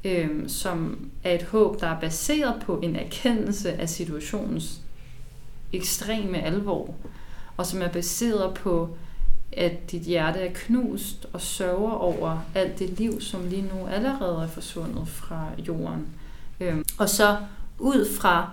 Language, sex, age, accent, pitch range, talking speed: Danish, female, 30-49, native, 175-220 Hz, 145 wpm